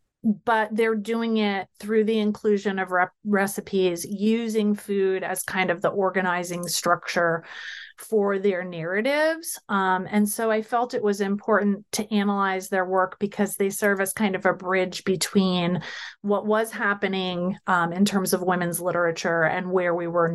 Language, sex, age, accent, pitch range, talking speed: English, female, 30-49, American, 185-215 Hz, 160 wpm